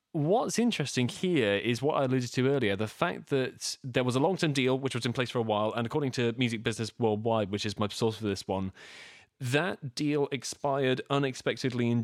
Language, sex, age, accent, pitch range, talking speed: English, male, 30-49, British, 105-140 Hz, 210 wpm